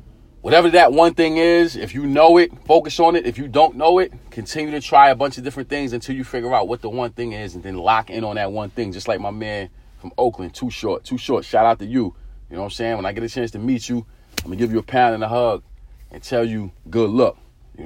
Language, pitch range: English, 105-125 Hz